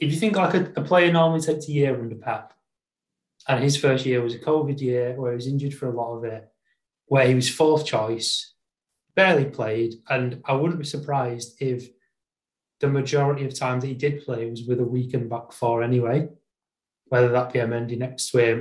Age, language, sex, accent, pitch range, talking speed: 30-49, English, male, British, 120-150 Hz, 210 wpm